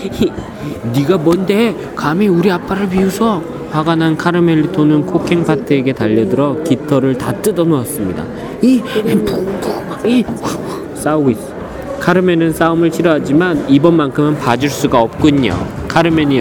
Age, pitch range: 40-59, 140-190 Hz